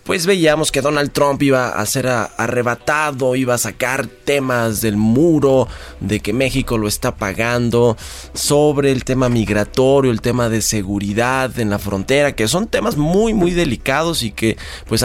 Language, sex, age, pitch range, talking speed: Spanish, male, 20-39, 105-140 Hz, 165 wpm